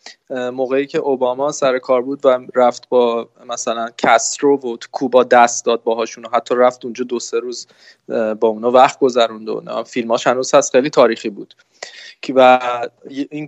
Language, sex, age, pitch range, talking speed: Persian, male, 20-39, 125-155 Hz, 160 wpm